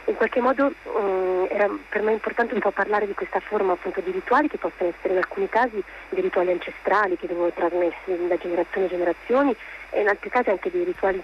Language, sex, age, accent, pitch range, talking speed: Italian, female, 30-49, native, 185-225 Hz, 220 wpm